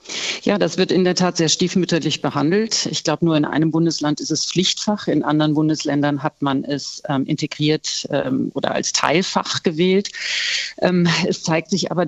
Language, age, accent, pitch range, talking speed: German, 50-69, German, 155-195 Hz, 180 wpm